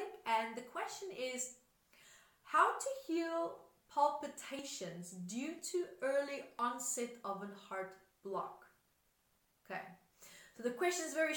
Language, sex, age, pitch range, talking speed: English, female, 30-49, 220-280 Hz, 115 wpm